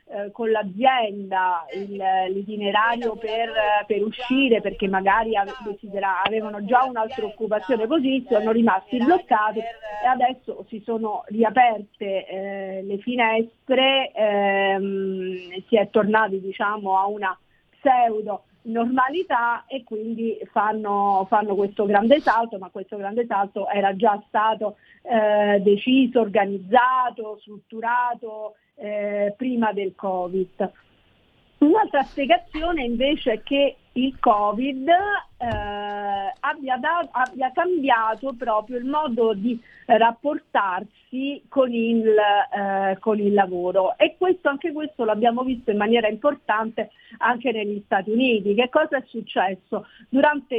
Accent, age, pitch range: native, 40-59, 200-250 Hz